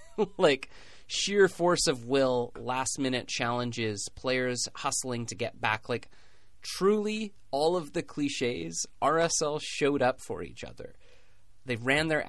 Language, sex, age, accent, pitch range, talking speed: English, male, 30-49, American, 110-135 Hz, 135 wpm